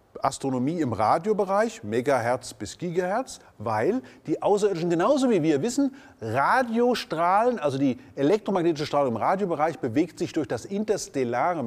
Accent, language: German, German